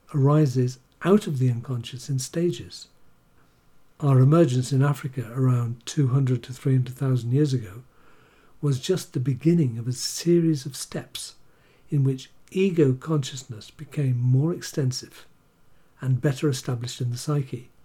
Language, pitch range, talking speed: English, 125-150 Hz, 135 wpm